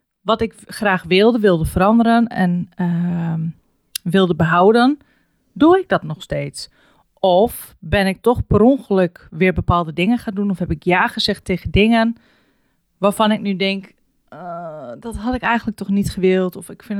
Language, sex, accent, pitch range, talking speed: Dutch, female, Dutch, 175-215 Hz, 170 wpm